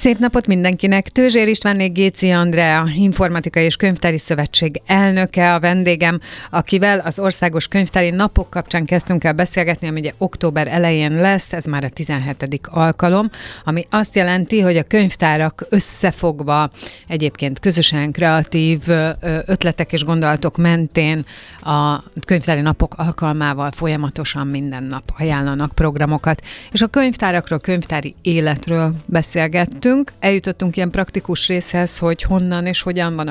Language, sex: Hungarian, female